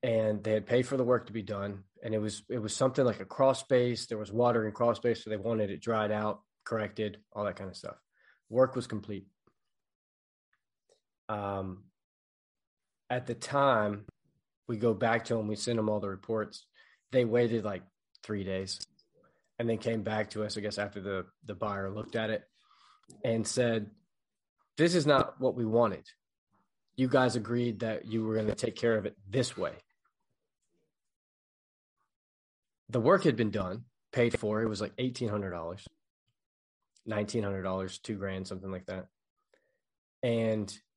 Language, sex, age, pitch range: English, male, 20-39, 105-120 Hz